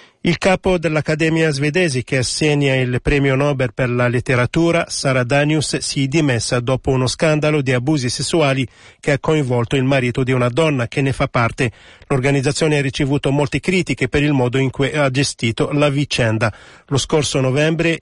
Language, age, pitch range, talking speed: Italian, 40-59, 125-150 Hz, 175 wpm